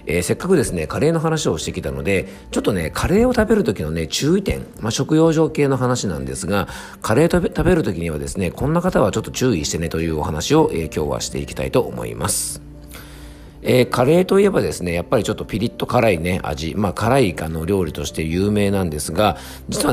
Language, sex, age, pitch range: Japanese, male, 50-69, 80-125 Hz